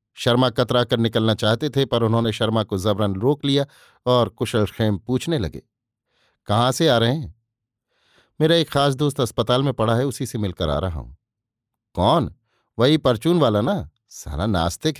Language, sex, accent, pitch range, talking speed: Hindi, male, native, 115-135 Hz, 175 wpm